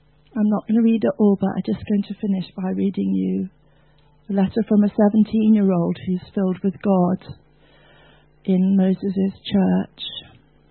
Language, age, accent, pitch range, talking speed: English, 40-59, British, 180-215 Hz, 155 wpm